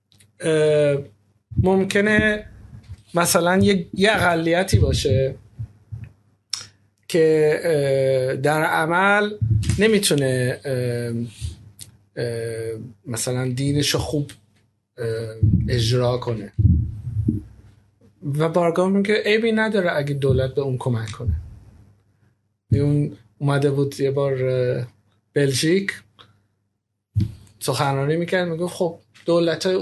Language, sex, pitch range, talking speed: Persian, male, 110-170 Hz, 90 wpm